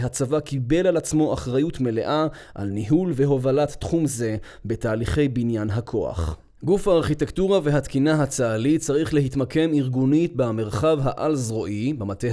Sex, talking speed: male, 115 wpm